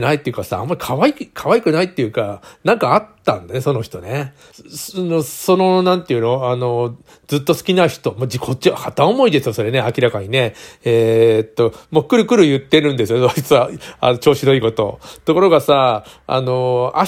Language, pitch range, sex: Japanese, 120-155 Hz, male